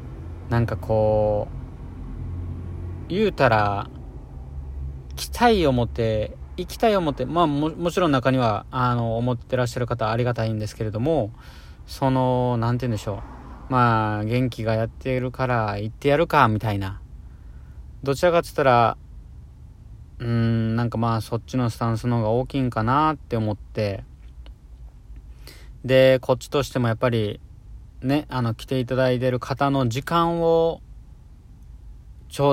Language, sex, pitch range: Japanese, male, 100-130 Hz